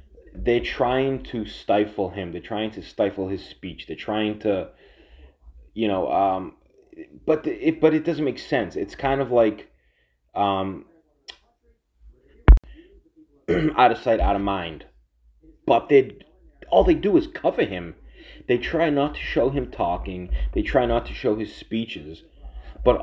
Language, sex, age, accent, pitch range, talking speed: English, male, 30-49, American, 95-120 Hz, 150 wpm